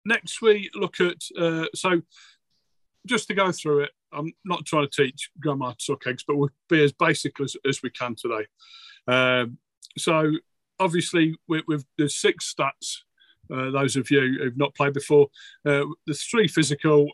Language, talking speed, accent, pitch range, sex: English, 175 wpm, British, 120-155 Hz, male